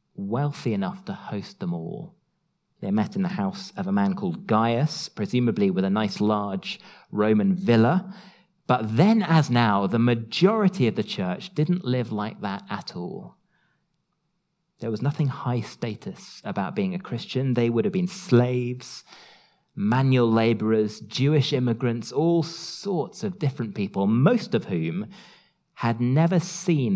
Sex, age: male, 30-49